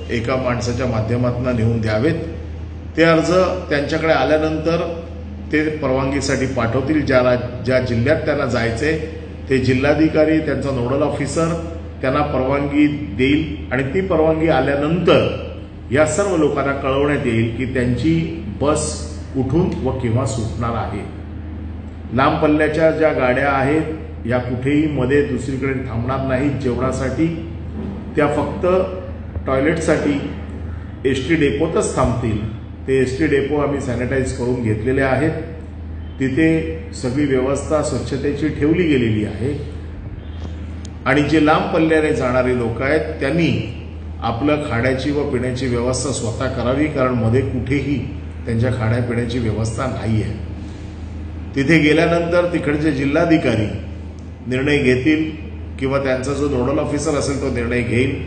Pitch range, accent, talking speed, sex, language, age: 110-145 Hz, native, 105 wpm, male, Marathi, 40-59